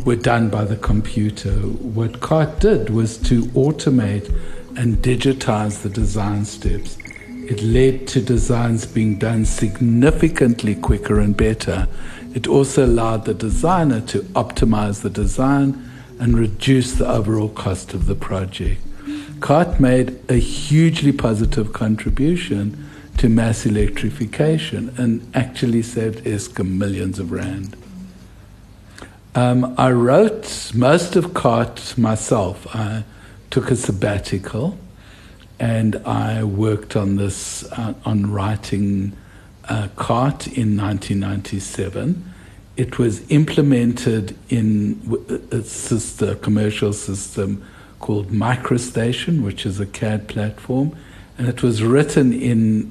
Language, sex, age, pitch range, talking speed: English, male, 60-79, 100-125 Hz, 115 wpm